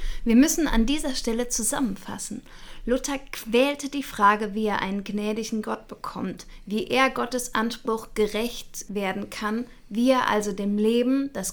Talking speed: 150 wpm